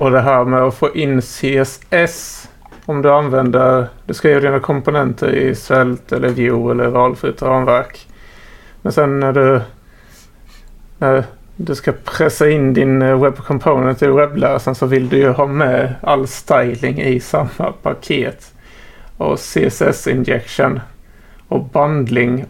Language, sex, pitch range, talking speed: Swedish, male, 130-145 Hz, 135 wpm